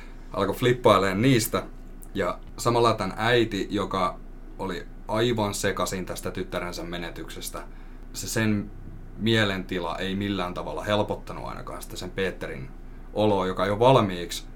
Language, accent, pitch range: Finnish, native, 80-100 Hz